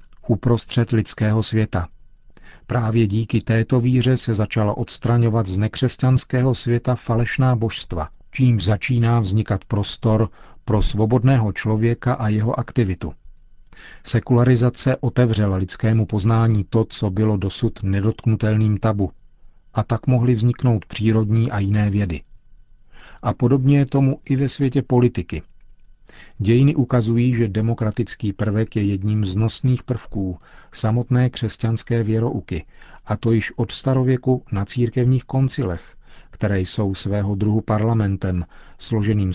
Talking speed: 120 wpm